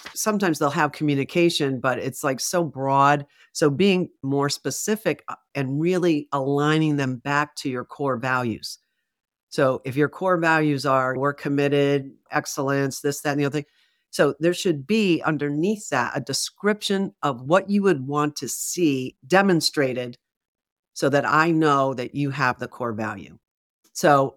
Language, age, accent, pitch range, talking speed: English, 50-69, American, 135-155 Hz, 160 wpm